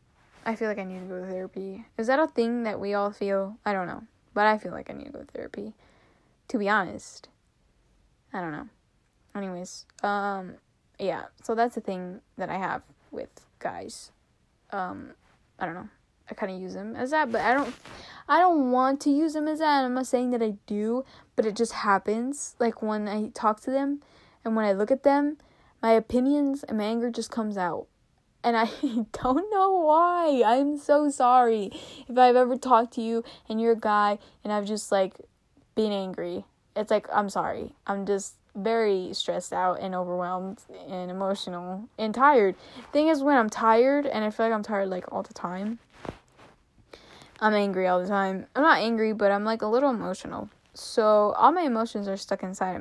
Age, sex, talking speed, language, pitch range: 10-29, female, 200 wpm, English, 195-255 Hz